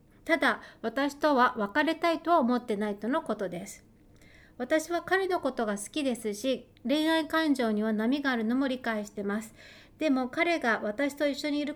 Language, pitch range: Japanese, 220-295 Hz